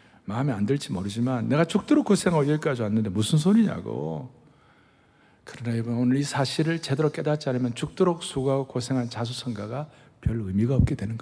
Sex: male